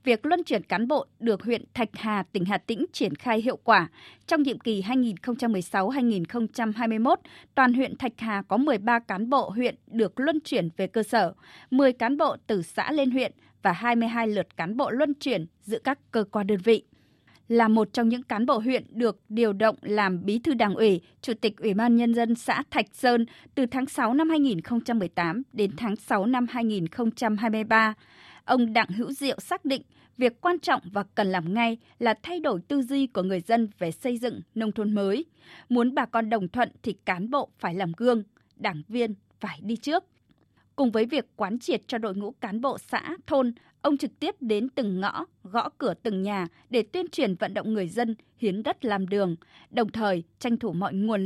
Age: 20-39